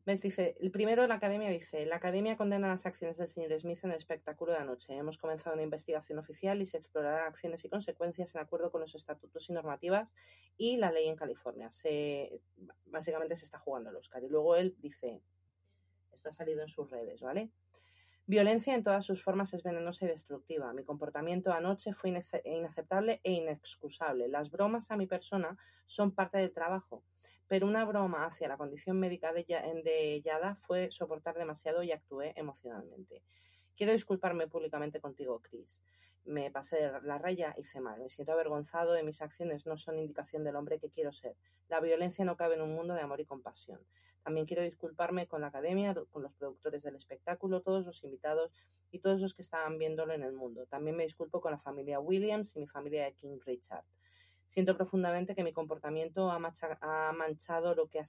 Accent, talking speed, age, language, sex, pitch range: Spanish, 195 wpm, 30-49, Spanish, female, 145-180 Hz